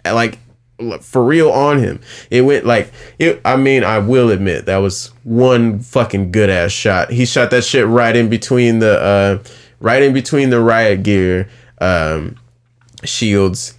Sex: male